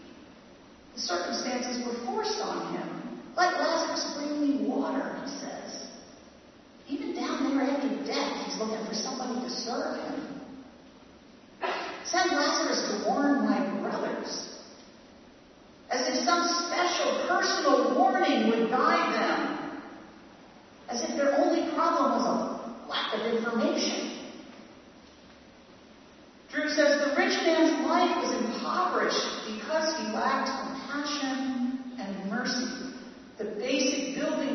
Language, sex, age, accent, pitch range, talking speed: English, female, 40-59, American, 250-295 Hz, 115 wpm